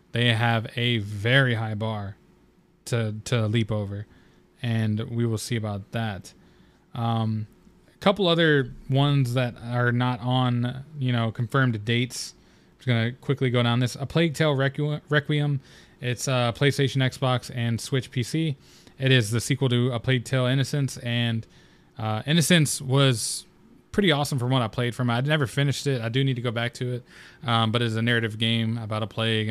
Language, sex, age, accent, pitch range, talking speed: English, male, 20-39, American, 115-130 Hz, 185 wpm